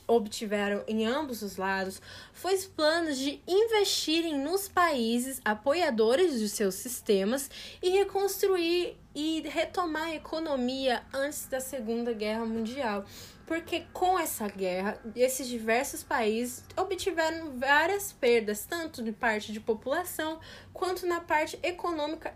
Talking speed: 125 wpm